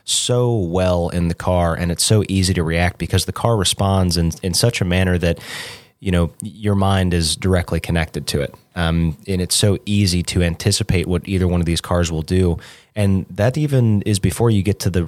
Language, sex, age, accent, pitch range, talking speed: English, male, 30-49, American, 85-105 Hz, 215 wpm